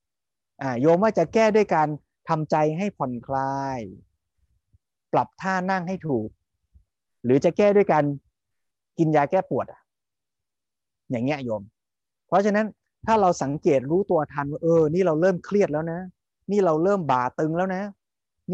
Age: 30-49